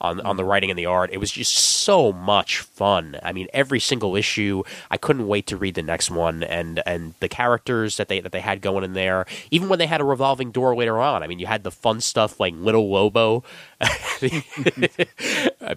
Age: 20-39